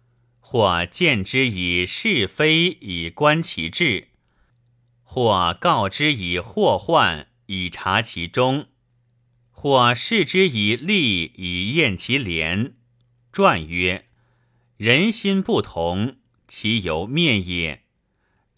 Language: Chinese